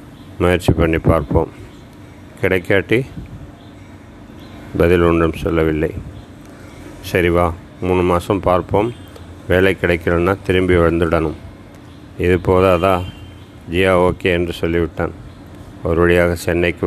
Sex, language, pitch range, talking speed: male, Tamil, 85-95 Hz, 85 wpm